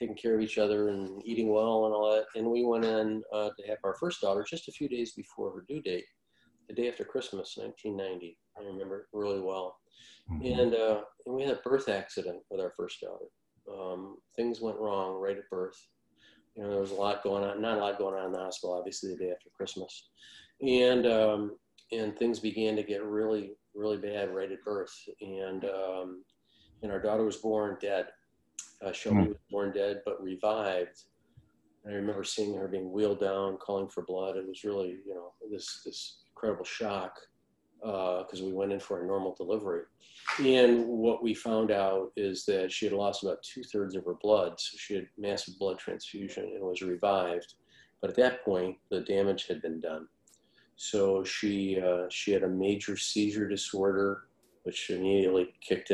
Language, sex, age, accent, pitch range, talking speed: English, male, 40-59, American, 95-110 Hz, 195 wpm